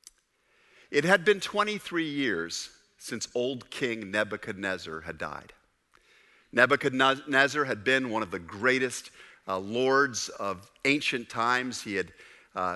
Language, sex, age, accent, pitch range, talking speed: English, male, 50-69, American, 120-150 Hz, 120 wpm